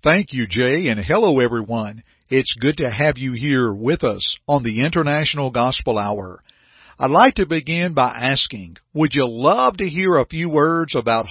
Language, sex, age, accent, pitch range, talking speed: English, male, 50-69, American, 125-165 Hz, 180 wpm